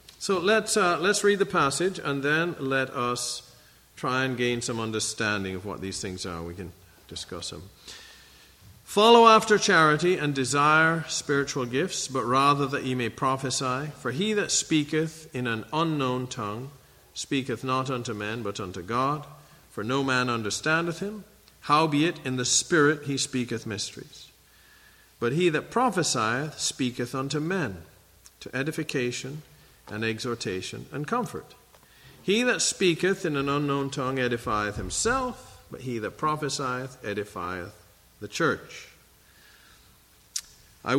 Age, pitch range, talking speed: 50-69, 115-155 Hz, 140 wpm